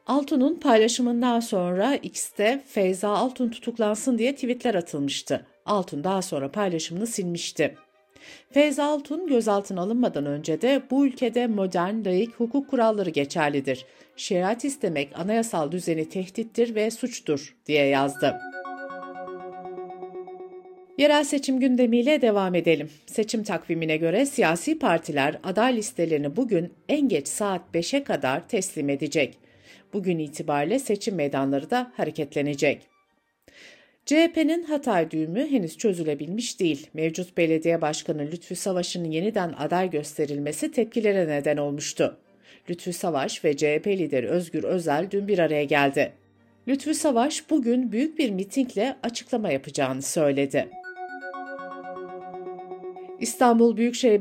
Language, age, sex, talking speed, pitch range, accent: Turkish, 60-79, female, 115 wpm, 160-240 Hz, native